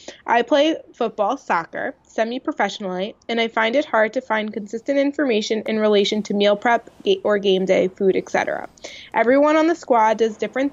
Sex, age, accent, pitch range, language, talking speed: female, 20-39, American, 205-250 Hz, English, 170 wpm